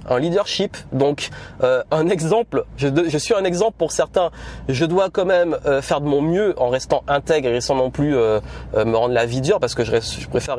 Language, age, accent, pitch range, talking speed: French, 30-49, French, 135-180 Hz, 230 wpm